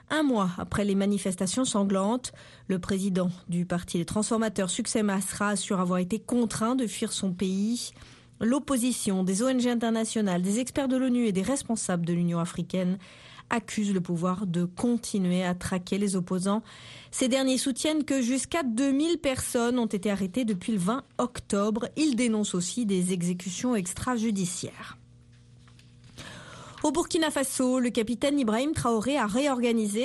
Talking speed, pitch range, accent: 150 wpm, 185-245 Hz, French